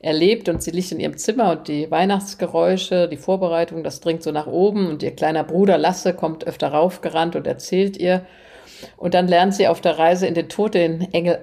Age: 50-69